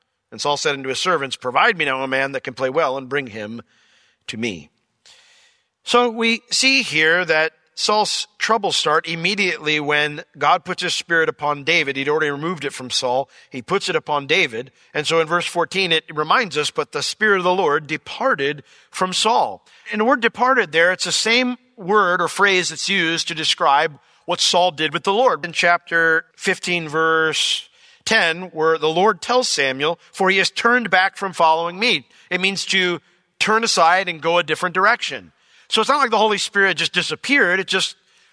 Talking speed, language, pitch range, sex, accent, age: 195 wpm, English, 150-205 Hz, male, American, 50-69